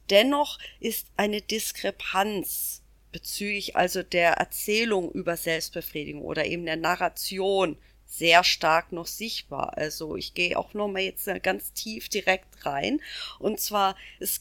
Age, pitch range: 40-59, 170-215 Hz